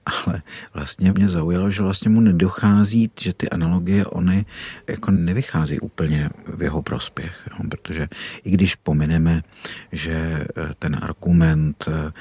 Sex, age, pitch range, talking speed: male, 50-69, 75-85 Hz, 125 wpm